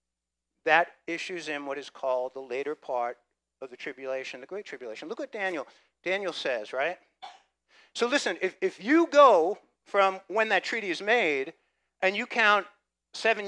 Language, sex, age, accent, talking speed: English, male, 50-69, American, 165 wpm